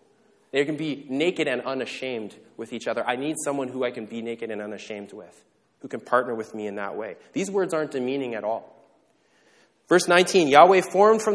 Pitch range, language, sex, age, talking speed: 120-160 Hz, English, male, 20-39, 205 wpm